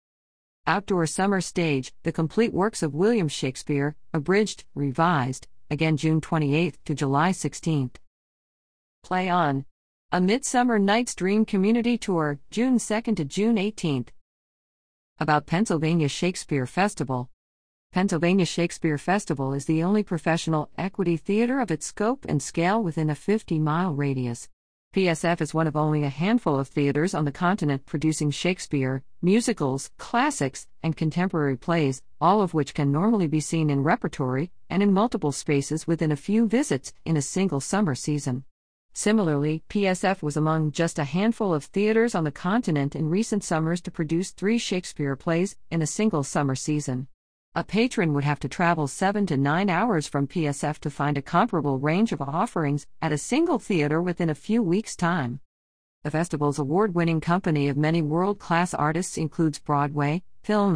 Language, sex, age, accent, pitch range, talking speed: English, female, 50-69, American, 145-195 Hz, 155 wpm